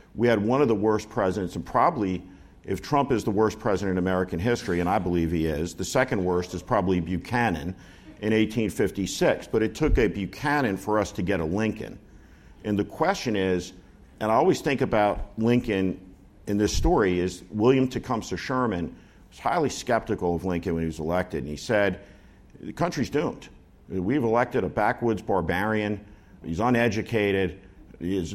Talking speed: 175 wpm